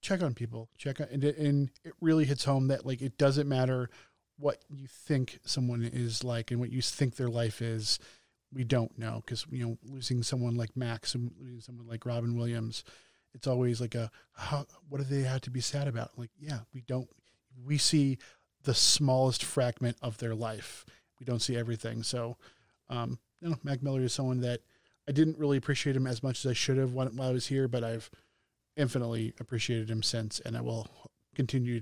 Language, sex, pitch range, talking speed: English, male, 120-145 Hz, 205 wpm